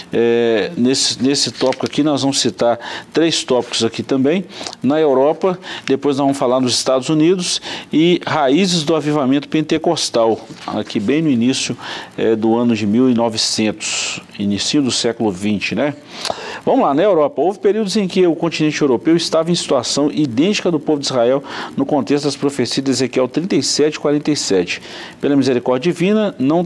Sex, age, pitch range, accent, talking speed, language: male, 50-69, 120-160 Hz, Brazilian, 155 wpm, Portuguese